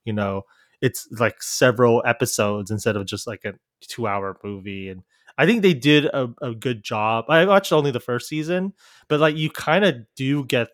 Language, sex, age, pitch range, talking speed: English, male, 20-39, 110-150 Hz, 200 wpm